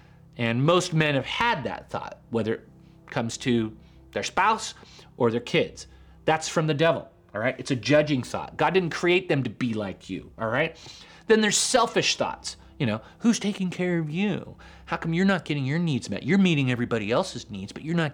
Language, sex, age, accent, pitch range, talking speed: English, male, 30-49, American, 115-180 Hz, 210 wpm